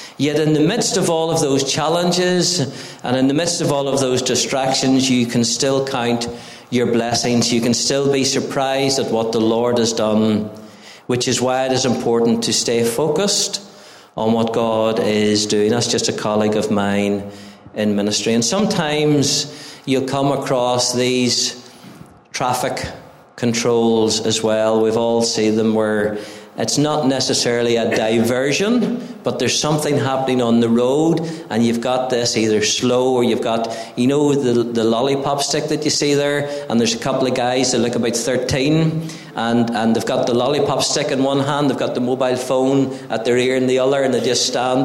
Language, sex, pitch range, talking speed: English, male, 115-140 Hz, 185 wpm